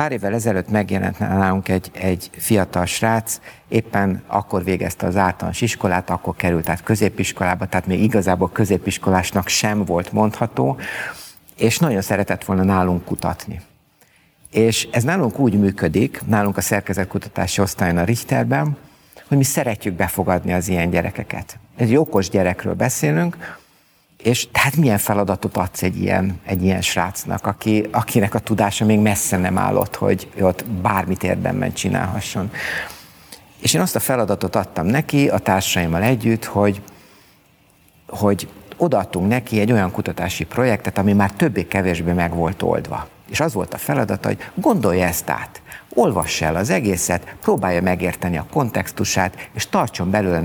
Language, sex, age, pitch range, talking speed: Hungarian, male, 50-69, 90-110 Hz, 145 wpm